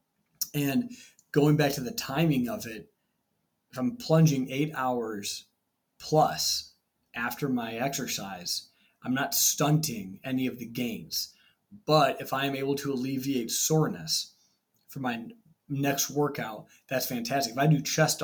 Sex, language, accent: male, English, American